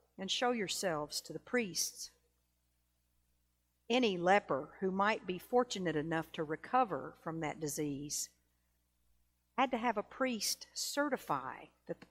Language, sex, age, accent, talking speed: English, female, 50-69, American, 130 wpm